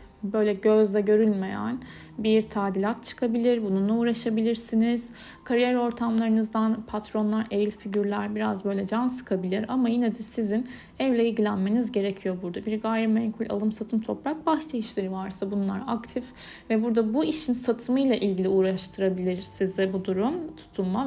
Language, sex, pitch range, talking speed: Turkish, female, 210-245 Hz, 130 wpm